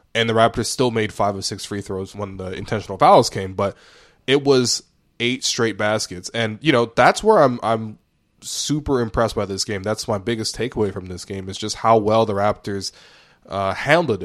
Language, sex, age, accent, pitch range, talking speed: English, male, 20-39, American, 105-125 Hz, 200 wpm